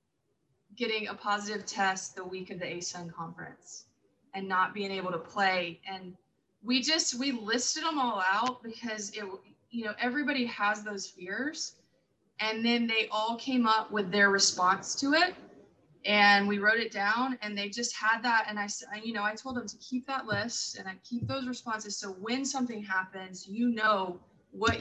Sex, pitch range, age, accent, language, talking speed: female, 190-230 Hz, 20-39, American, English, 185 wpm